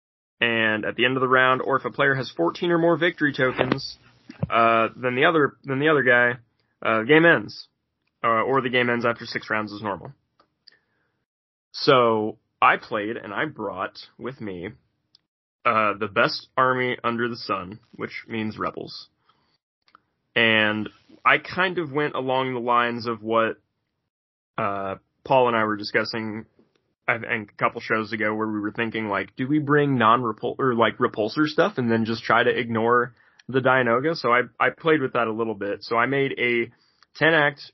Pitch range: 110-135 Hz